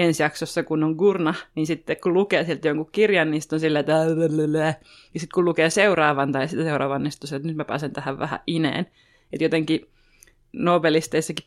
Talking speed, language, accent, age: 190 wpm, Finnish, native, 20-39